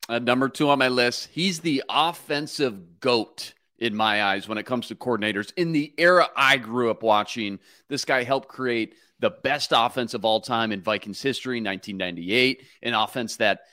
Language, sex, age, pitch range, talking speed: English, male, 30-49, 110-145 Hz, 185 wpm